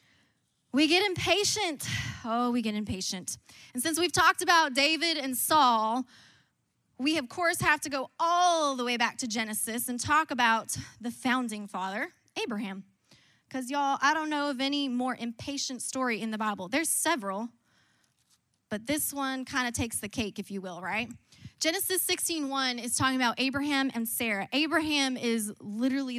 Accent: American